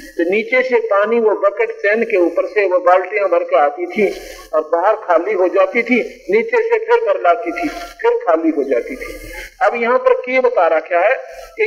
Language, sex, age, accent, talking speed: Hindi, male, 50-69, native, 215 wpm